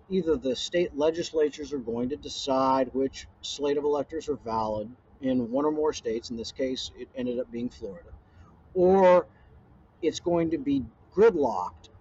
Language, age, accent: English, 50-69, American